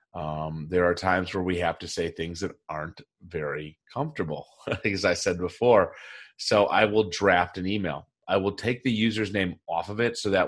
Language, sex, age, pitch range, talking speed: English, male, 30-49, 90-105 Hz, 200 wpm